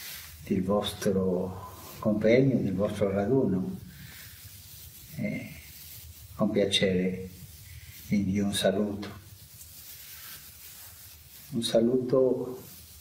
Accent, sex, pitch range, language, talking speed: Italian, male, 90-115 Hz, English, 70 wpm